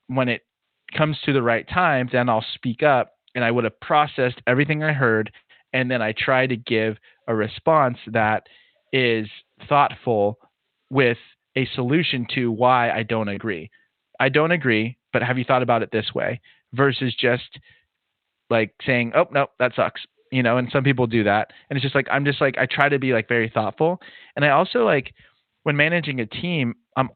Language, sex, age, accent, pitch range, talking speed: English, male, 30-49, American, 110-135 Hz, 190 wpm